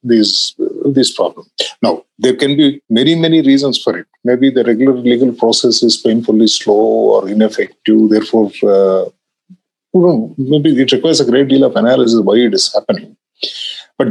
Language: English